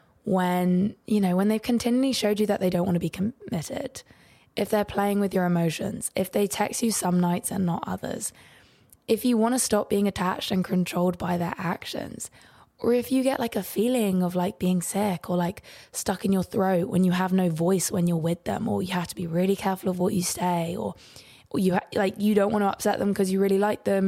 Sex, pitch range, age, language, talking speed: female, 180-205 Hz, 20-39, English, 230 wpm